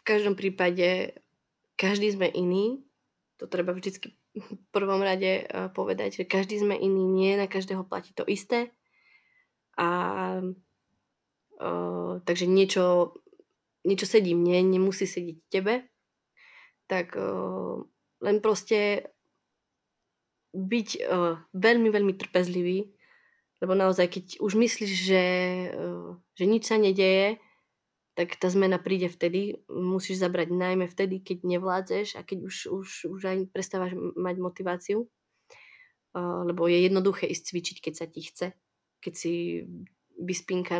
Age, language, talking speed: 20-39, Czech, 125 wpm